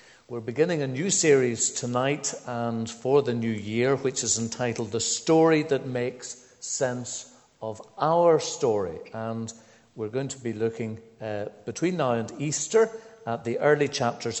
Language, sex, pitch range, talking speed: English, male, 115-135 Hz, 155 wpm